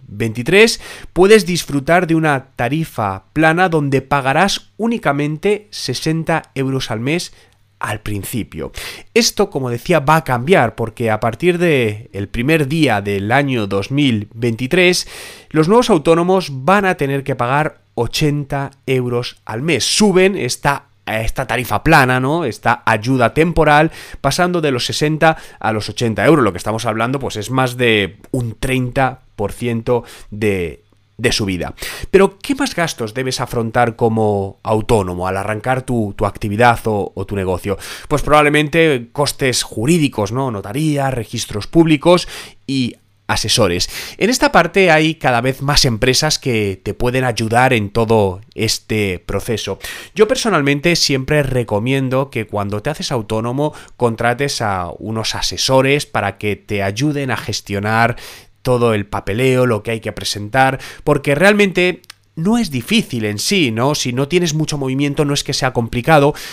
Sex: male